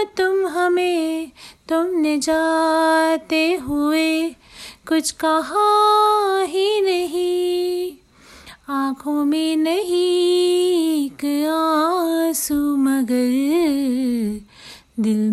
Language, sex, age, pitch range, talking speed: Hindi, female, 30-49, 290-360 Hz, 55 wpm